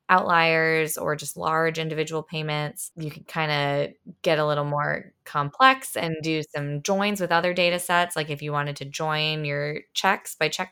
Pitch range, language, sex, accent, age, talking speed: 145-165 Hz, English, female, American, 20-39, 185 wpm